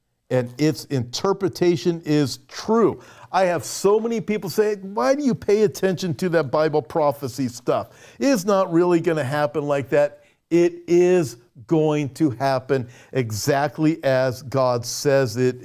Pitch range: 130-165 Hz